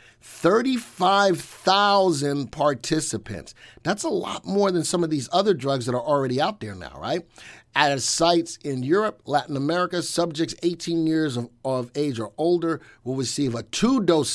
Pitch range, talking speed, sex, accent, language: 130-170 Hz, 155 wpm, male, American, English